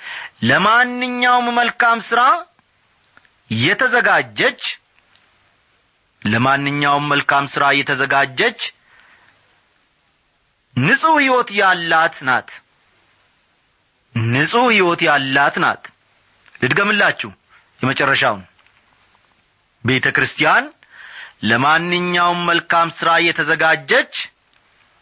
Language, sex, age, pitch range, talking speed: Amharic, male, 40-59, 145-225 Hz, 50 wpm